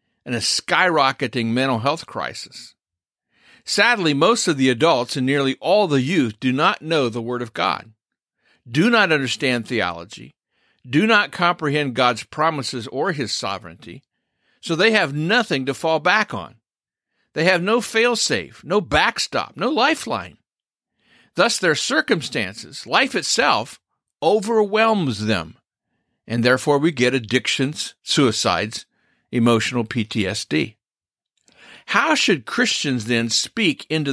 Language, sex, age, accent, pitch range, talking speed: English, male, 50-69, American, 120-170 Hz, 125 wpm